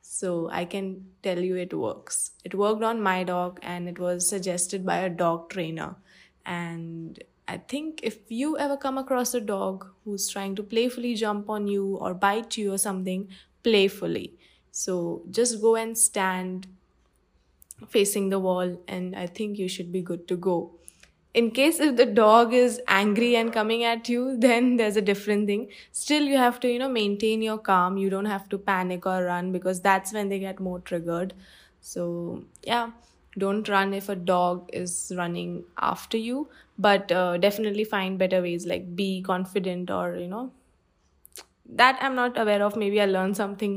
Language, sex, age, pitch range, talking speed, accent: English, female, 20-39, 185-225 Hz, 180 wpm, Indian